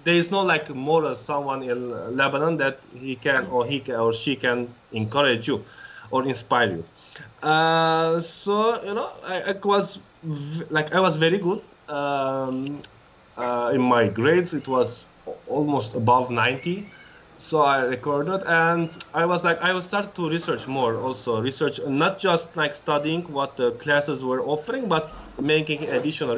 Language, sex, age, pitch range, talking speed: English, male, 20-39, 140-180 Hz, 160 wpm